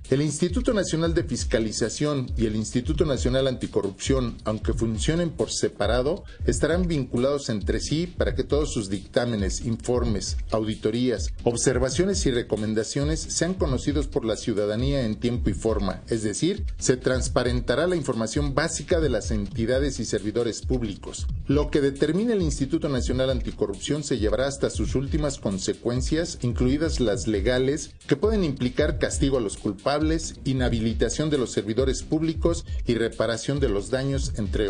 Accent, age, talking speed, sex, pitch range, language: Mexican, 40-59, 145 wpm, male, 110-145 Hz, Spanish